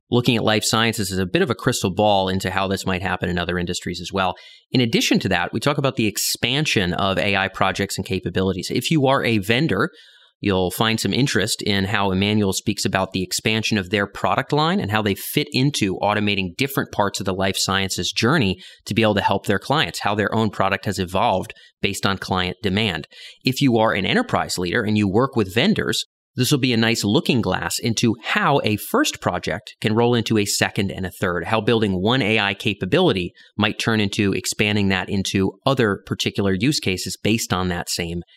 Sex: male